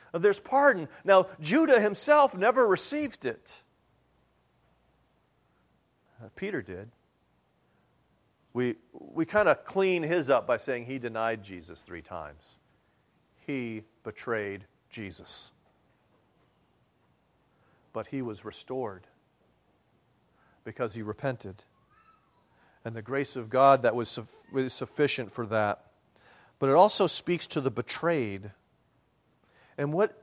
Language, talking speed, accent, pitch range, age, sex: English, 105 wpm, American, 130-195 Hz, 40-59, male